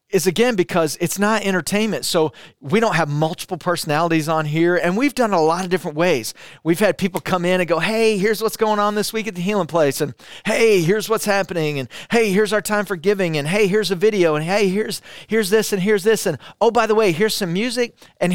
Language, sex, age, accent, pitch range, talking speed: English, male, 40-59, American, 155-205 Hz, 240 wpm